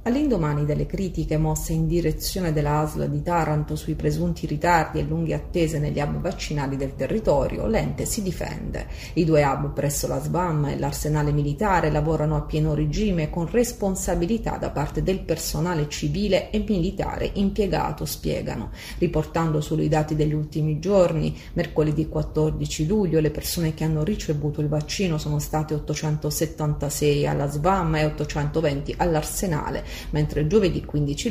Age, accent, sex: 30-49, native, female